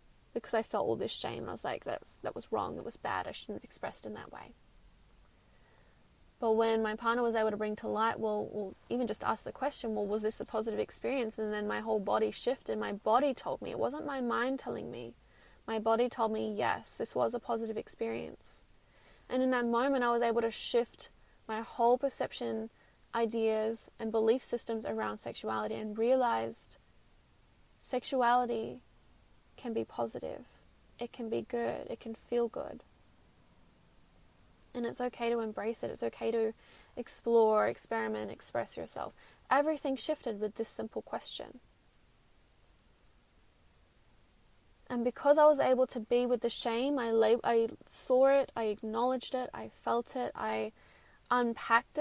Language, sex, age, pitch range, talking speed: English, female, 10-29, 210-245 Hz, 165 wpm